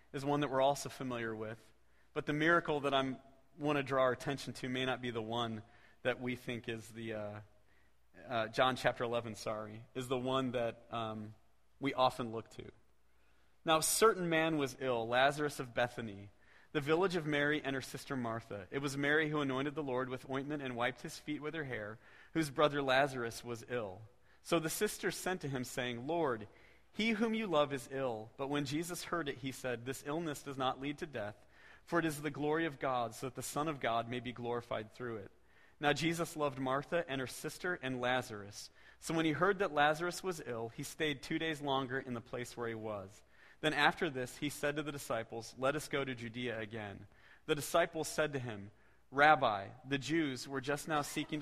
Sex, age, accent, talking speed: male, 40-59, American, 210 wpm